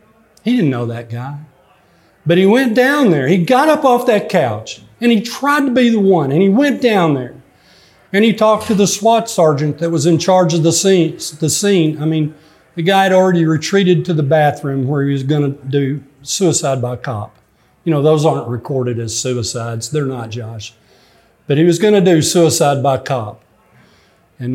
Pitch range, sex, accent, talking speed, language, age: 125-180 Hz, male, American, 195 wpm, English, 40-59